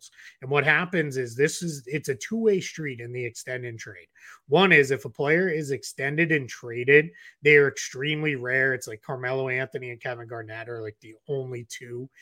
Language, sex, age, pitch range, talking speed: English, male, 30-49, 125-160 Hz, 195 wpm